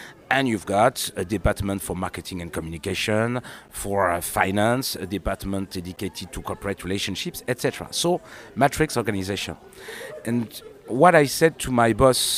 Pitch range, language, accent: 95-130 Hz, English, French